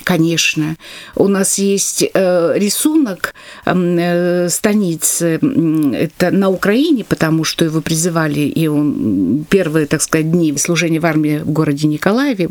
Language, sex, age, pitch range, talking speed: Russian, female, 50-69, 175-215 Hz, 120 wpm